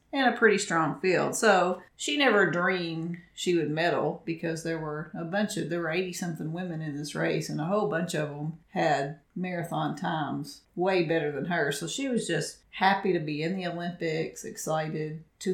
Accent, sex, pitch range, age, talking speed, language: American, female, 155-180 Hz, 40-59, 195 wpm, English